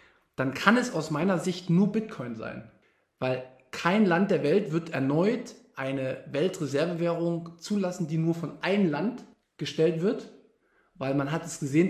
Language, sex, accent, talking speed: German, male, German, 155 wpm